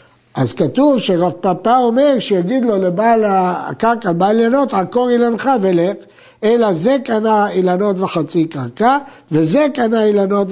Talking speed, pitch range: 130 wpm, 175-245 Hz